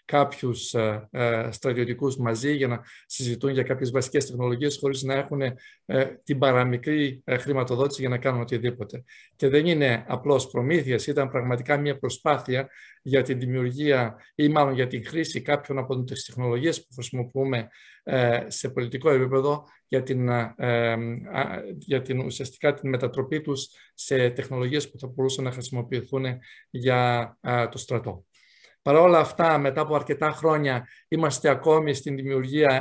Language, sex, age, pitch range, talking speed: Greek, male, 50-69, 125-145 Hz, 135 wpm